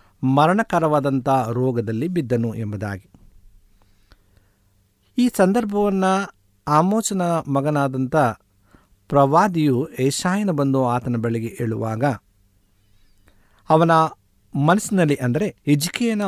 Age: 50-69